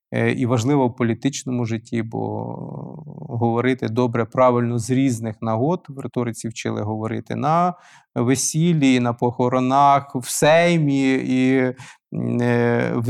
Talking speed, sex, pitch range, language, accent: 110 wpm, male, 125-160 Hz, Ukrainian, native